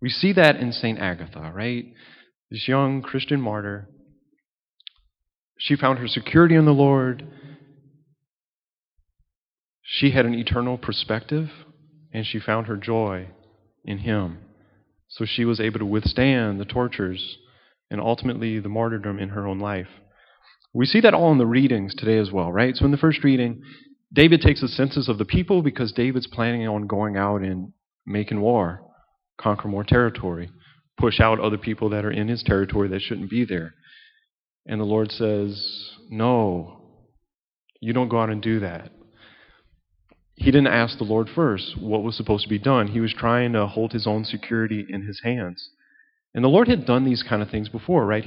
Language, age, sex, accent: English, 30-49, male, American